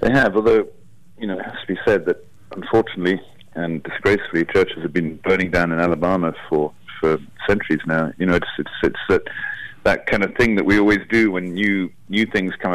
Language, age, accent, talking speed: English, 40-59, British, 205 wpm